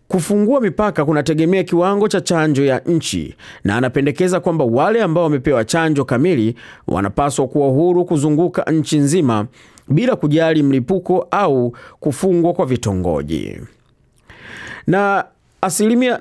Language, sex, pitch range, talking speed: Swahili, male, 135-180 Hz, 115 wpm